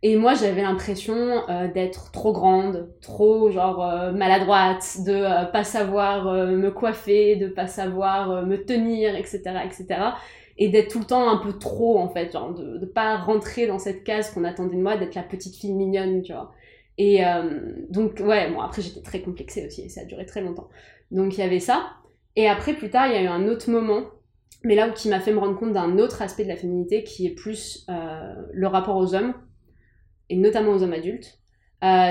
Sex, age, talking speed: female, 20-39, 220 wpm